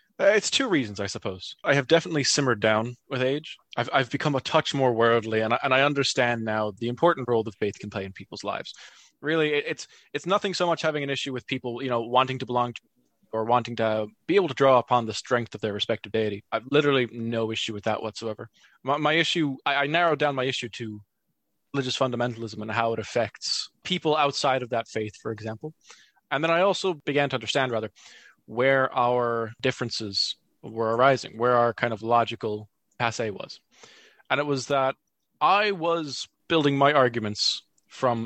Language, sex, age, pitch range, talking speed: English, male, 20-39, 115-150 Hz, 200 wpm